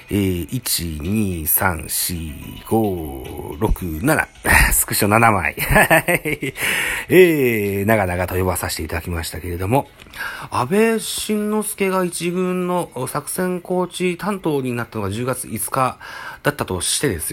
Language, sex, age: Japanese, male, 40-59